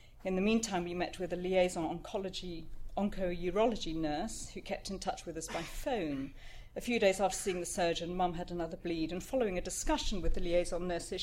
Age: 40-59